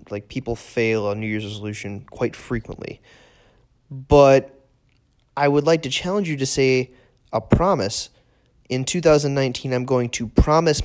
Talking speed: 145 wpm